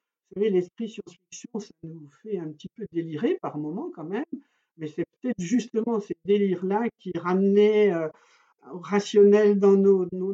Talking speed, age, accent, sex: 165 wpm, 60-79, French, male